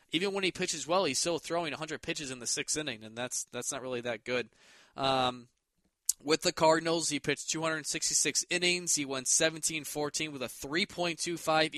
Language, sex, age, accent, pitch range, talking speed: English, male, 20-39, American, 120-150 Hz, 180 wpm